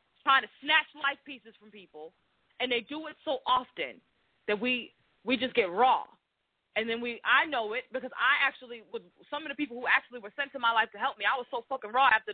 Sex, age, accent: female, 20-39, American